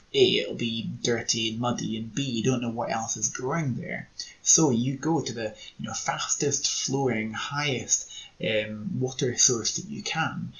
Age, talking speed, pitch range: 20-39, 180 wpm, 115-140 Hz